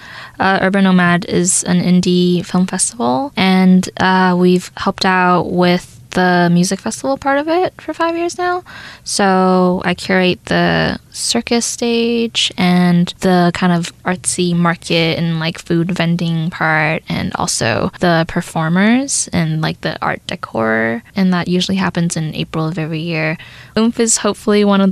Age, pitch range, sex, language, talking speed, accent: 10-29, 175-195 Hz, female, English, 155 wpm, American